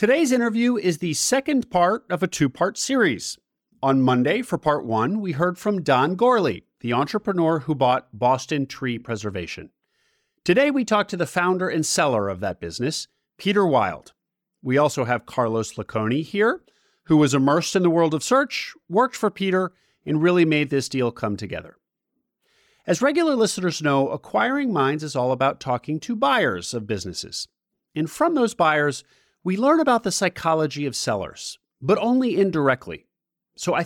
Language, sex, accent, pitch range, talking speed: English, male, American, 135-215 Hz, 165 wpm